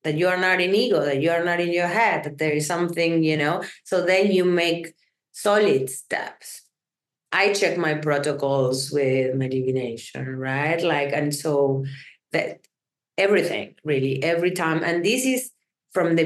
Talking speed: 170 wpm